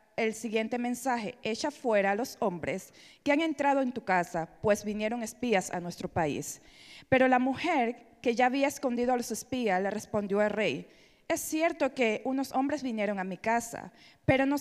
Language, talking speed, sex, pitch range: English, 185 wpm, female, 215-270 Hz